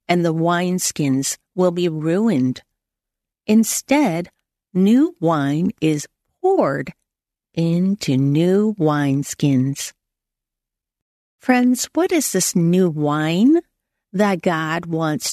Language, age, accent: English, 50-69, American